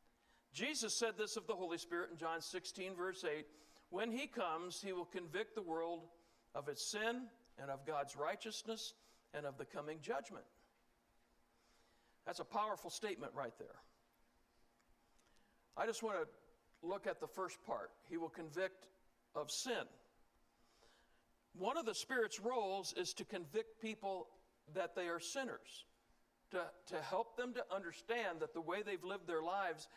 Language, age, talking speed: English, 60-79, 155 wpm